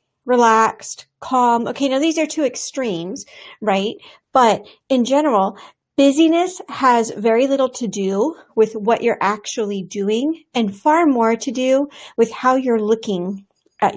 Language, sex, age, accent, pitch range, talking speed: English, female, 40-59, American, 210-255 Hz, 140 wpm